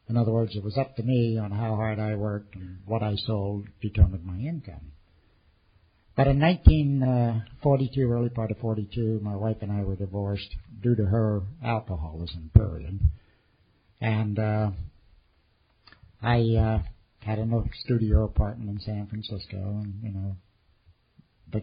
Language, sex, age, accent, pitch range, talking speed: English, male, 60-79, American, 95-120 Hz, 150 wpm